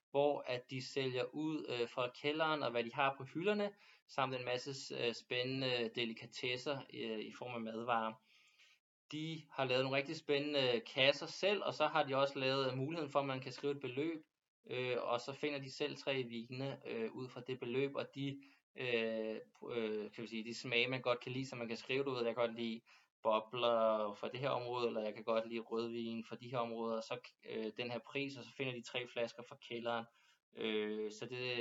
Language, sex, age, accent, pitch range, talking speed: Danish, male, 20-39, native, 115-135 Hz, 220 wpm